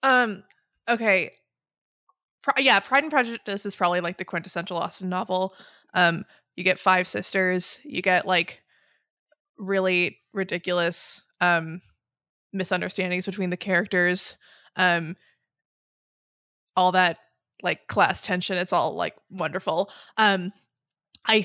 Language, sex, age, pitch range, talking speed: English, female, 20-39, 180-220 Hz, 115 wpm